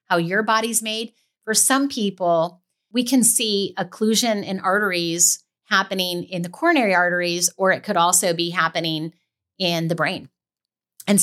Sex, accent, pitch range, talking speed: female, American, 170-210 Hz, 150 wpm